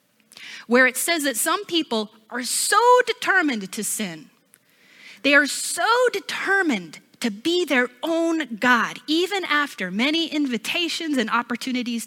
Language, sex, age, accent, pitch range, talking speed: English, female, 30-49, American, 215-295 Hz, 130 wpm